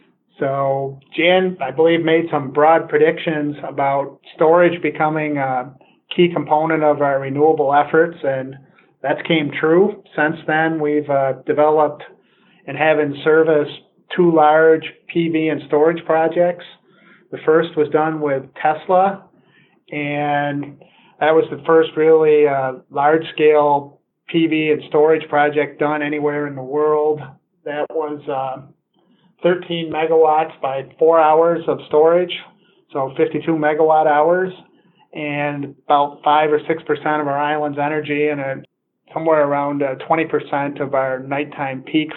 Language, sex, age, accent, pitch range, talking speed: English, male, 40-59, American, 145-160 Hz, 135 wpm